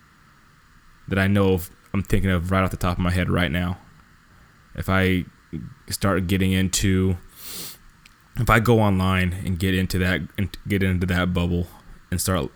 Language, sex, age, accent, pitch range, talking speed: English, male, 20-39, American, 90-100 Hz, 170 wpm